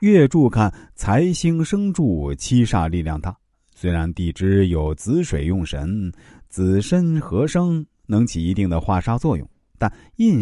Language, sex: Chinese, male